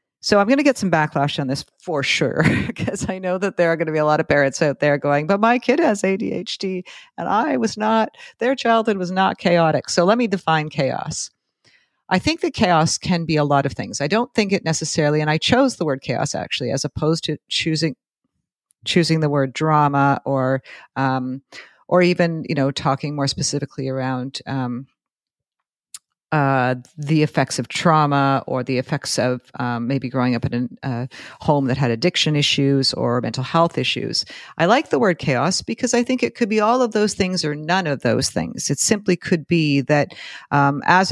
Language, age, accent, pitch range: English, 50-69, American, 135-180 Hz